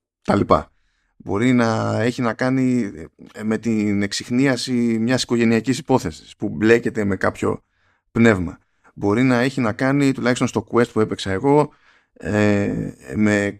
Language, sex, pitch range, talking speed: Greek, male, 100-120 Hz, 135 wpm